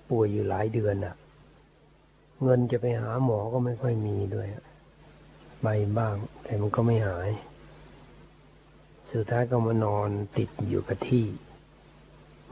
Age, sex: 60-79, male